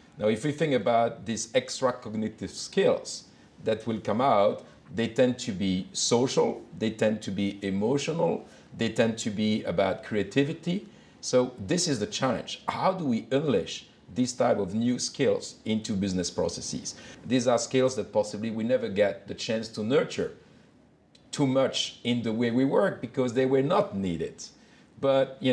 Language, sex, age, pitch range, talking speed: English, male, 50-69, 105-130 Hz, 170 wpm